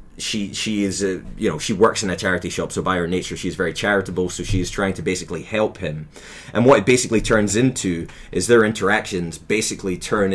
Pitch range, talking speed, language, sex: 90-120 Hz, 220 wpm, English, male